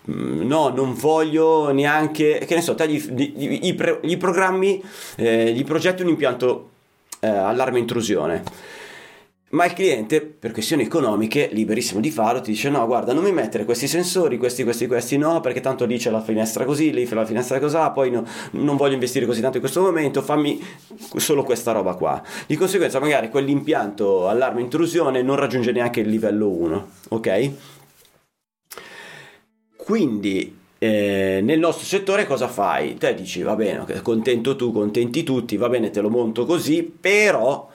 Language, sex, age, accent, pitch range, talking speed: Italian, male, 30-49, native, 115-160 Hz, 165 wpm